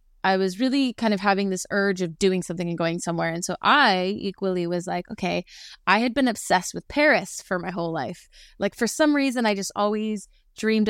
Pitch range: 180-215 Hz